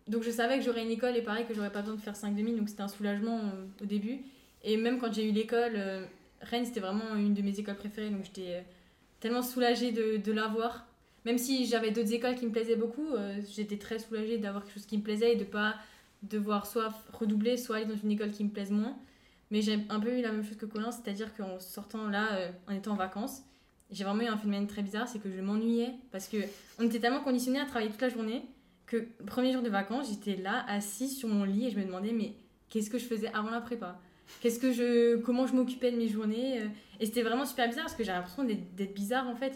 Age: 10-29